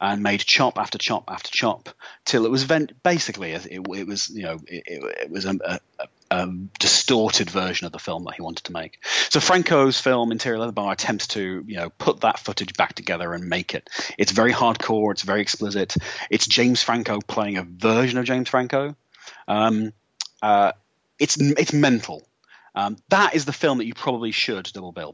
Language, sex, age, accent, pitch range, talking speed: English, male, 30-49, British, 100-125 Hz, 200 wpm